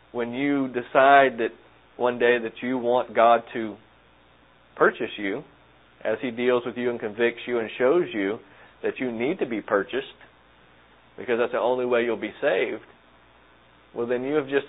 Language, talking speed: English, 175 wpm